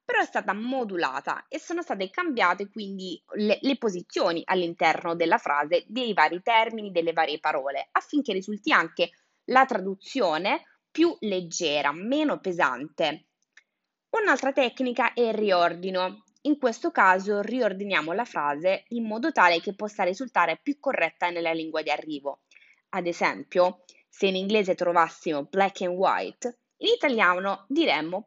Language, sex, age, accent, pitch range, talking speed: Italian, female, 20-39, native, 175-255 Hz, 140 wpm